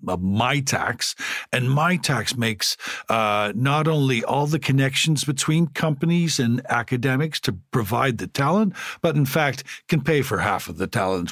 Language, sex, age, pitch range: Chinese, male, 50-69, 110-150 Hz